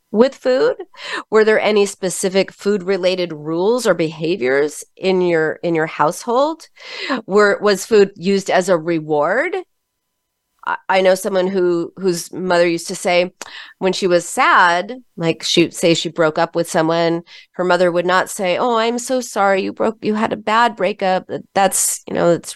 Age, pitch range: 30-49, 175-240 Hz